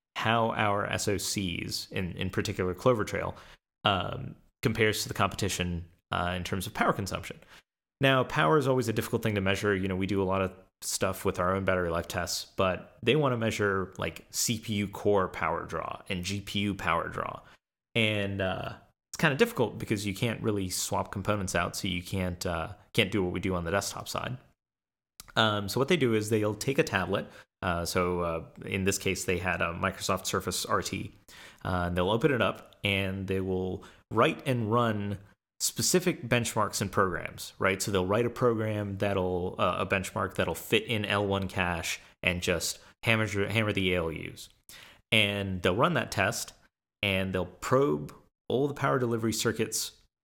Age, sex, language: 30-49, male, English